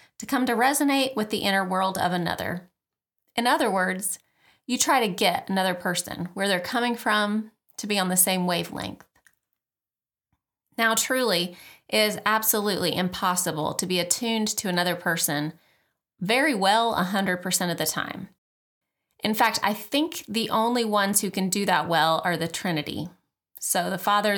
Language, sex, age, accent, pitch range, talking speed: English, female, 30-49, American, 180-225 Hz, 160 wpm